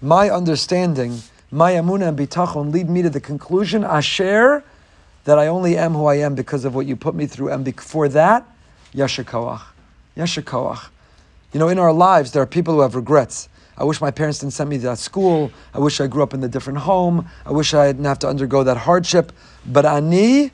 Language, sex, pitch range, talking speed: English, male, 135-170 Hz, 215 wpm